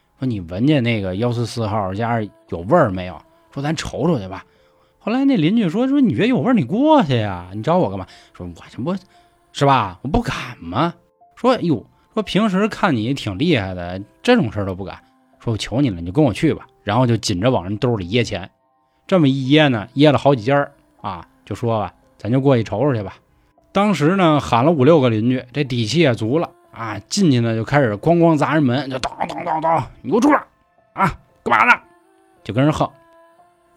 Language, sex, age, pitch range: Chinese, male, 20-39, 110-170 Hz